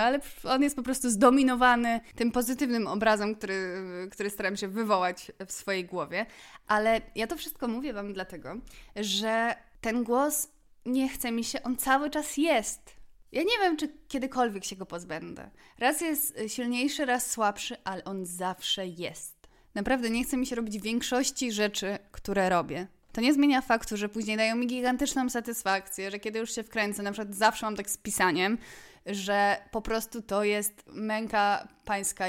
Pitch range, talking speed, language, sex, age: 200-255 Hz, 170 wpm, Polish, female, 20-39